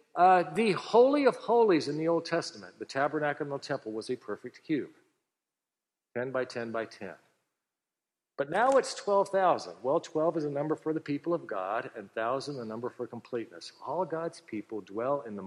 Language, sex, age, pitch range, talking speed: English, male, 50-69, 130-200 Hz, 190 wpm